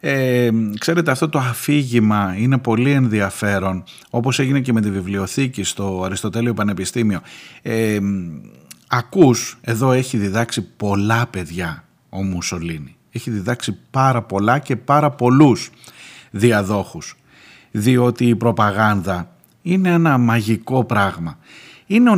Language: Greek